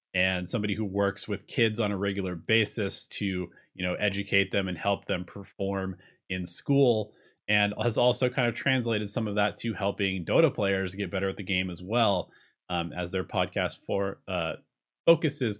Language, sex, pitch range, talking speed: English, male, 95-110 Hz, 185 wpm